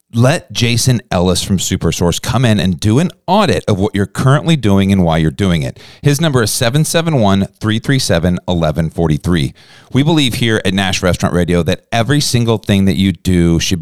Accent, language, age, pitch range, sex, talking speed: American, English, 40-59, 95-125 Hz, male, 175 wpm